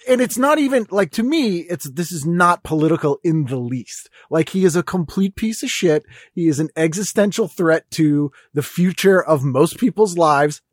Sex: male